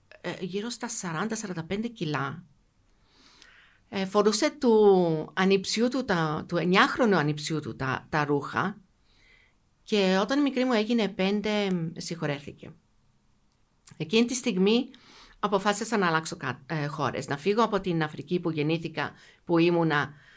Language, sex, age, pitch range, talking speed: Greek, female, 50-69, 160-220 Hz, 115 wpm